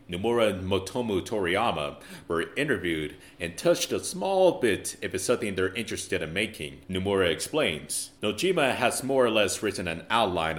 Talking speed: 160 wpm